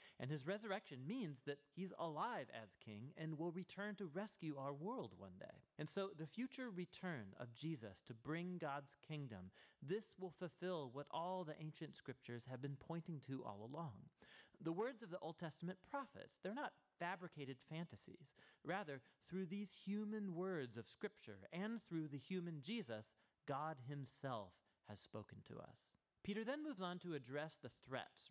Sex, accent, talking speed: male, American, 170 wpm